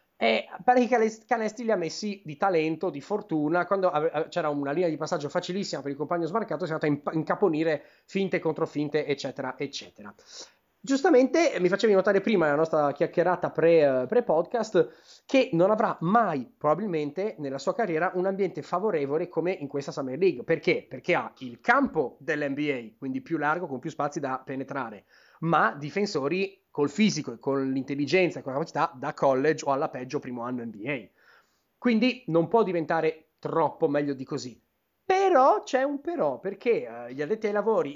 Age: 30-49